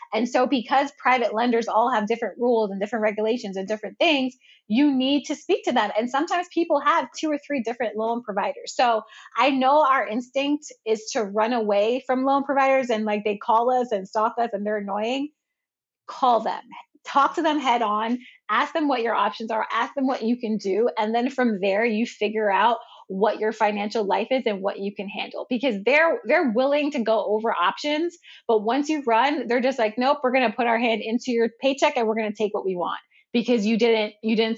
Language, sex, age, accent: English, female, 20-39, American